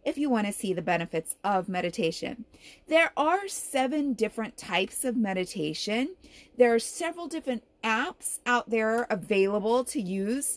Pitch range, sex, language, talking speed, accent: 200-285 Hz, female, English, 140 wpm, American